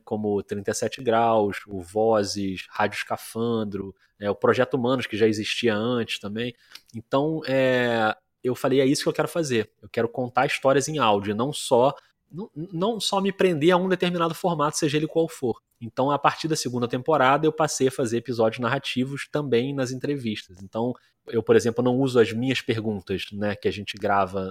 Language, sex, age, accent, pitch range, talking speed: Portuguese, male, 20-39, Brazilian, 110-145 Hz, 175 wpm